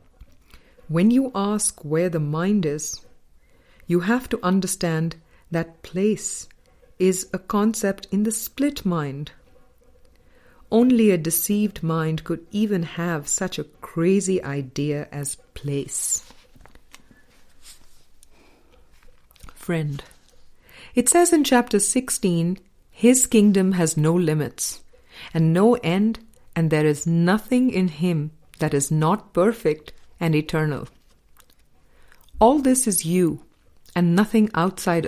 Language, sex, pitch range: English, female, 145-205 Hz